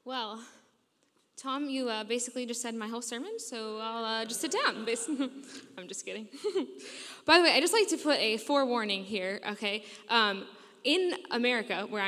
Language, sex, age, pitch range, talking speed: English, female, 10-29, 215-280 Hz, 175 wpm